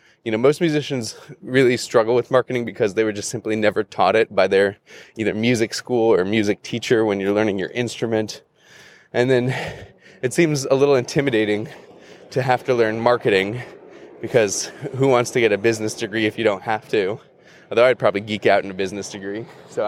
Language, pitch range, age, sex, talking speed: English, 110-135 Hz, 20-39, male, 195 wpm